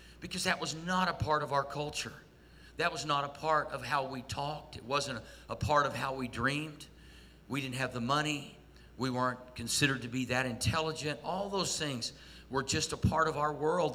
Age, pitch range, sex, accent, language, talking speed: 50-69, 130-155 Hz, male, American, English, 205 wpm